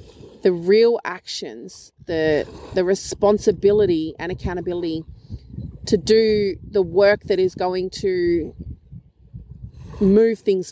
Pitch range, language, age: 175-205 Hz, English, 30-49